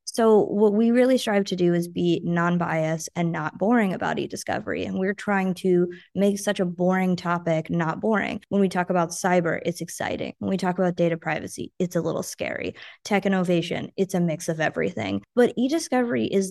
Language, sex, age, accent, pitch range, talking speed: English, female, 20-39, American, 175-215 Hz, 195 wpm